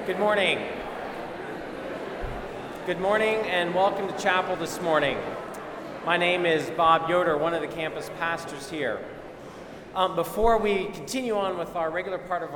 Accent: American